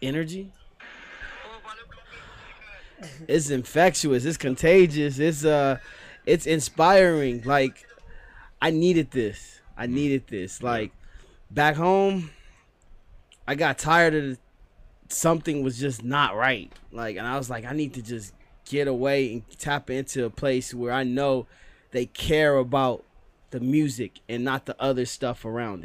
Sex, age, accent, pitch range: male, 20-39, American, 120-150 Hz